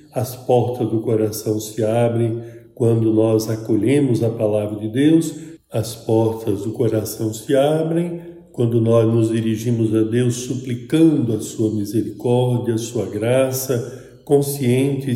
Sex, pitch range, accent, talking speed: male, 110-140 Hz, Brazilian, 130 wpm